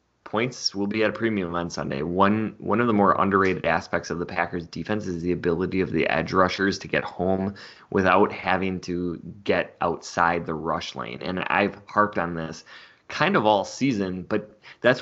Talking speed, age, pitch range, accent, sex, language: 190 wpm, 20-39, 90-110 Hz, American, male, English